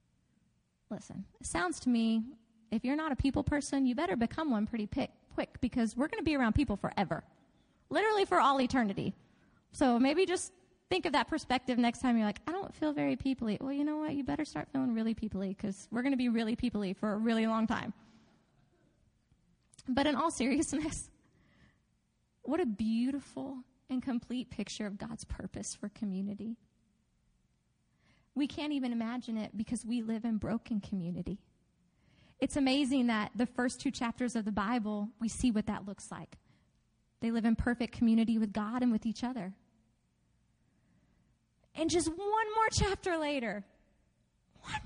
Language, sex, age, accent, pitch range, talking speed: English, female, 20-39, American, 220-275 Hz, 170 wpm